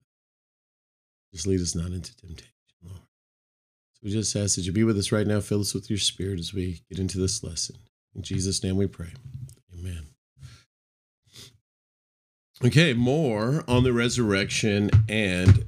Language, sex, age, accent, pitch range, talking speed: English, male, 40-59, American, 100-135 Hz, 155 wpm